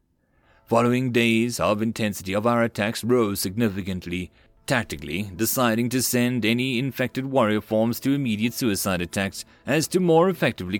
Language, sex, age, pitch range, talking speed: English, male, 30-49, 105-130 Hz, 140 wpm